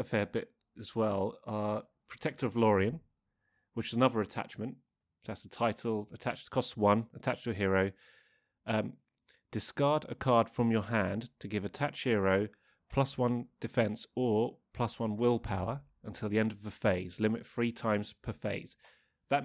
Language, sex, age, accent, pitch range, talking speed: English, male, 30-49, British, 100-120 Hz, 165 wpm